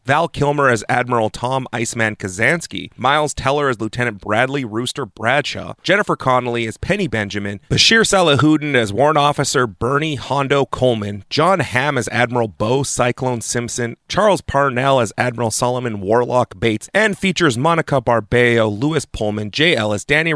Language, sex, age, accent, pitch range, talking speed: English, male, 30-49, American, 110-150 Hz, 145 wpm